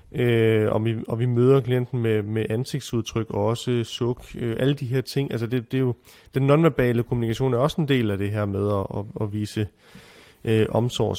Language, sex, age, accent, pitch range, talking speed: Danish, male, 30-49, native, 110-130 Hz, 220 wpm